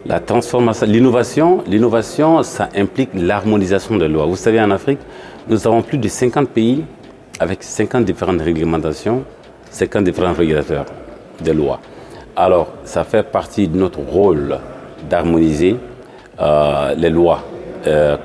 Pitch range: 85-115 Hz